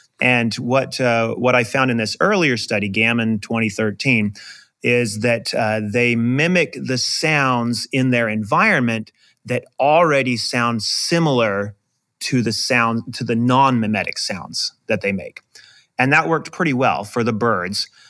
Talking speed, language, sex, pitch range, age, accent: 145 wpm, English, male, 115-140 Hz, 30-49, American